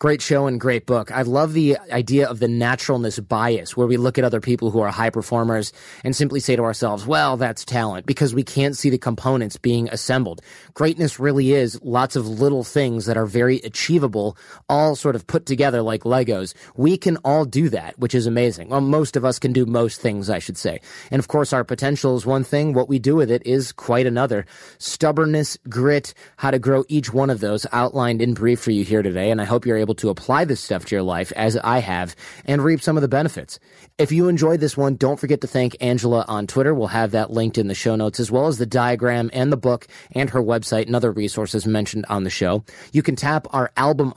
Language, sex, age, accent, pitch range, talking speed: English, male, 30-49, American, 115-140 Hz, 235 wpm